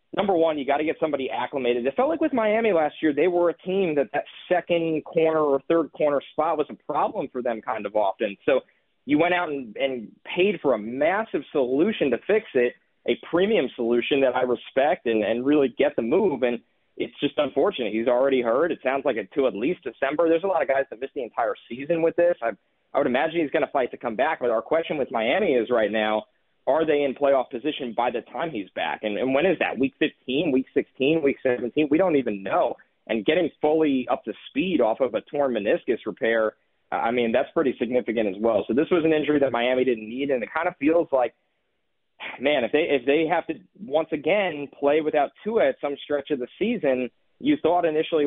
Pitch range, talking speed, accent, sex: 125-160 Hz, 230 wpm, American, male